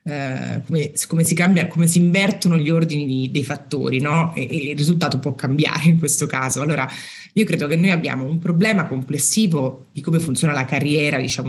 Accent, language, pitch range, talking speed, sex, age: native, Italian, 130-165 Hz, 200 wpm, female, 30-49